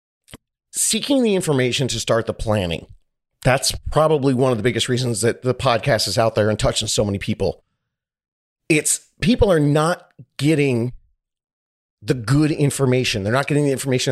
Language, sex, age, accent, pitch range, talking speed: English, male, 30-49, American, 115-145 Hz, 160 wpm